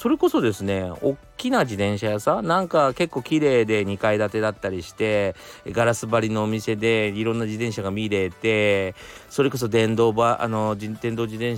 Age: 40-59